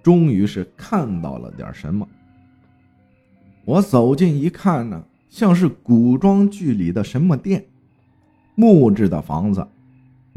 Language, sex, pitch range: Chinese, male, 120-200 Hz